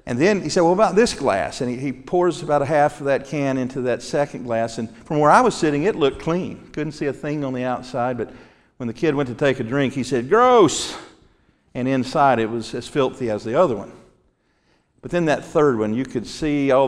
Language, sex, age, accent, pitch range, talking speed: English, male, 50-69, American, 115-145 Hz, 245 wpm